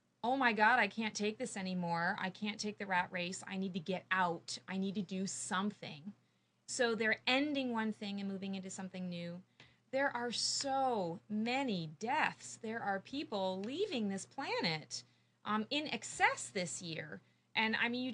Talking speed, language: 180 wpm, English